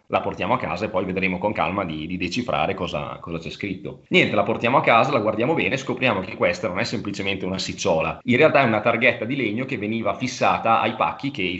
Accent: native